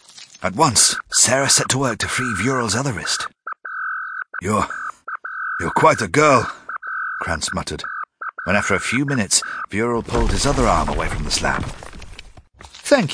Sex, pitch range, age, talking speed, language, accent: male, 95-130 Hz, 50-69, 150 wpm, English, British